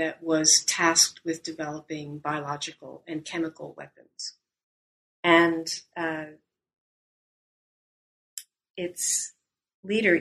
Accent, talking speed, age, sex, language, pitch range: American, 75 wpm, 40-59, female, English, 145-175 Hz